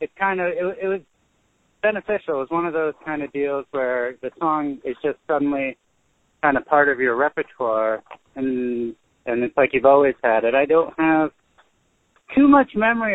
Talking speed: 185 wpm